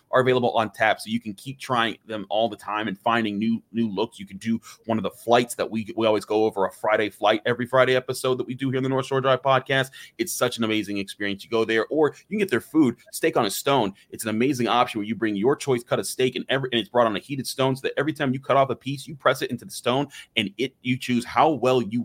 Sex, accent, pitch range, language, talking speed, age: male, American, 110-130 Hz, English, 295 wpm, 30-49